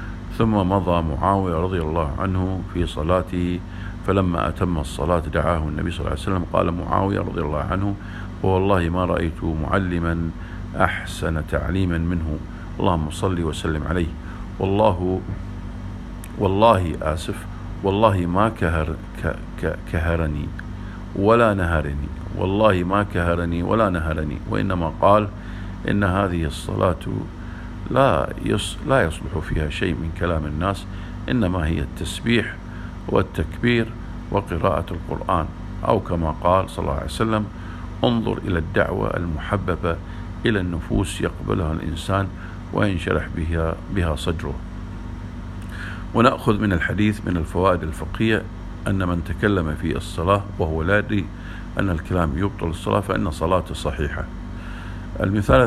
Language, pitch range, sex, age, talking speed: English, 85-100 Hz, male, 50-69, 115 wpm